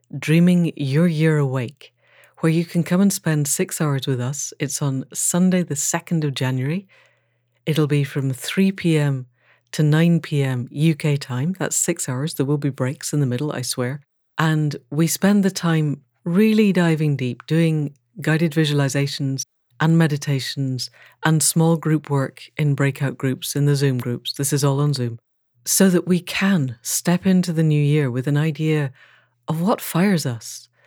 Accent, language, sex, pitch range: British, English, female, 130-160 Hz